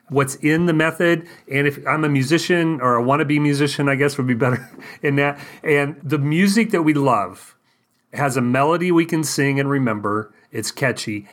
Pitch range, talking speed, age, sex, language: 120-145 Hz, 195 wpm, 40-59, male, English